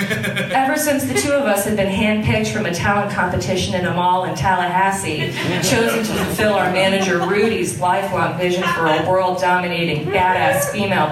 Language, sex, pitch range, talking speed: English, female, 180-250 Hz, 165 wpm